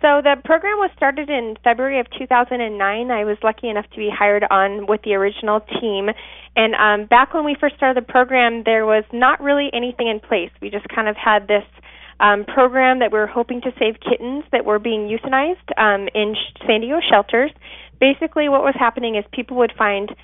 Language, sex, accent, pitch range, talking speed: English, female, American, 210-255 Hz, 205 wpm